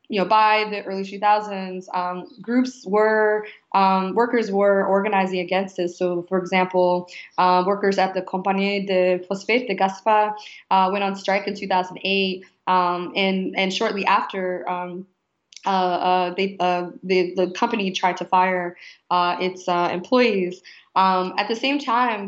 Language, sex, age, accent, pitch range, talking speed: English, female, 20-39, American, 185-210 Hz, 155 wpm